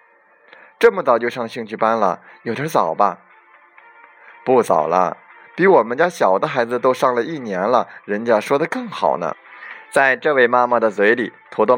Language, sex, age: Chinese, male, 20-39